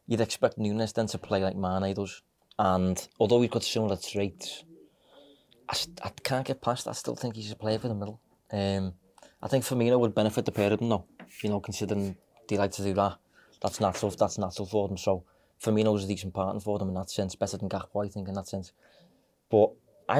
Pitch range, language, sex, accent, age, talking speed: 95-110 Hz, English, male, British, 20-39, 225 wpm